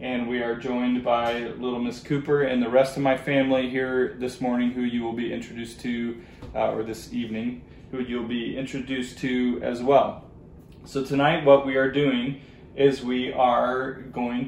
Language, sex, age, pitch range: English, male, 20-39, 125-140 Hz